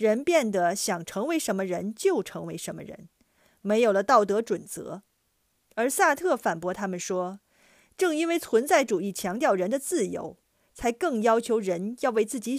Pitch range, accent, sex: 195-270 Hz, native, female